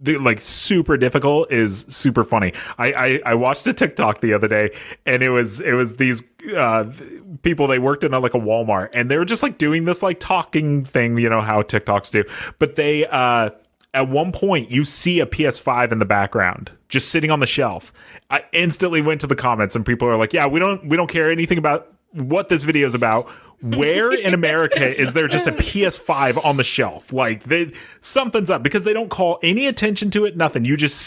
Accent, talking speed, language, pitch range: American, 210 wpm, English, 120-170 Hz